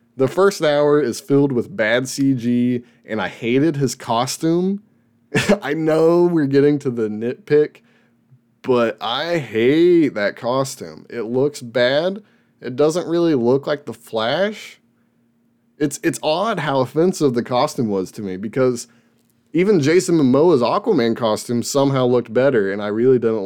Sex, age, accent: male, 20-39, American